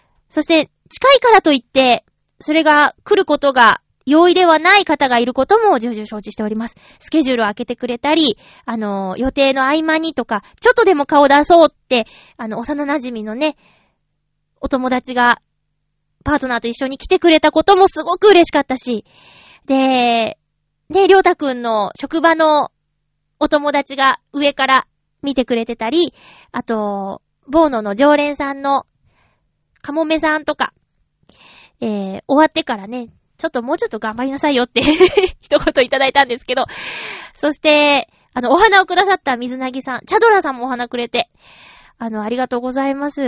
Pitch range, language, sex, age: 245-320 Hz, Japanese, female, 20-39